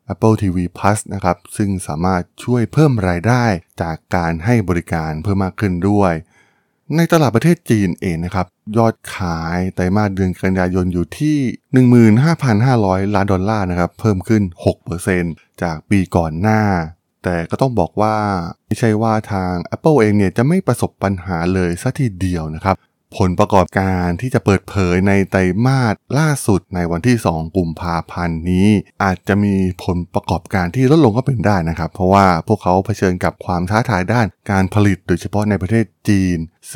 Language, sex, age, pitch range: Thai, male, 20-39, 90-110 Hz